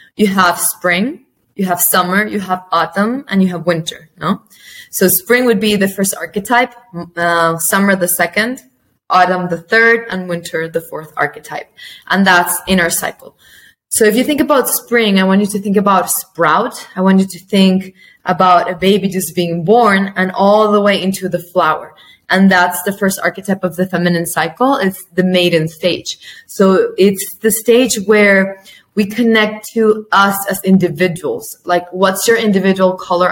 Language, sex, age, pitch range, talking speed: English, female, 20-39, 180-205 Hz, 175 wpm